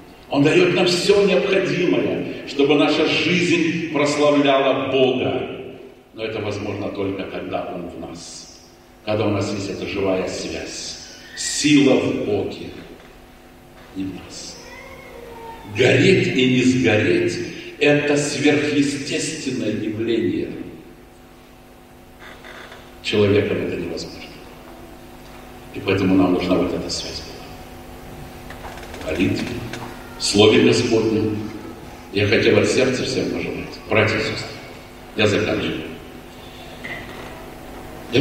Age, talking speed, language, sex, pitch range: 50-69, 100 wpm, Russian, male, 95-135 Hz